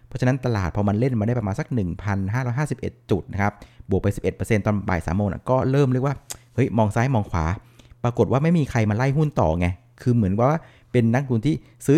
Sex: male